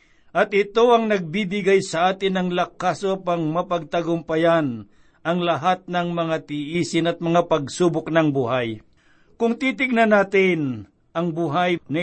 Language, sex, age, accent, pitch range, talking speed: Filipino, male, 50-69, native, 160-185 Hz, 130 wpm